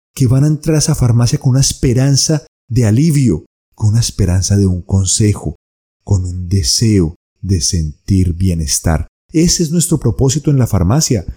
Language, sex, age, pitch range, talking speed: Spanish, male, 30-49, 95-130 Hz, 165 wpm